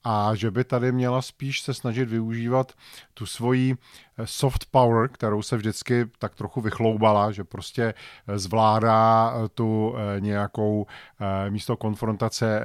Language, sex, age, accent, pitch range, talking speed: Czech, male, 40-59, native, 105-125 Hz, 125 wpm